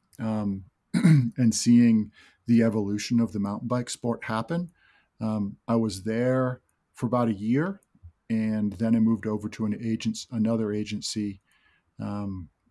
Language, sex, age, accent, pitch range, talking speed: English, male, 50-69, American, 105-120 Hz, 140 wpm